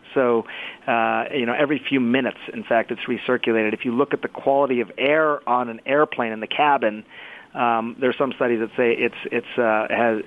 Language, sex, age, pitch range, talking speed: English, male, 40-59, 115-135 Hz, 205 wpm